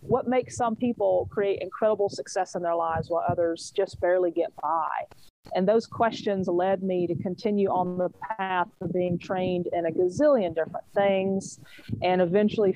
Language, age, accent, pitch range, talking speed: English, 40-59, American, 180-220 Hz, 170 wpm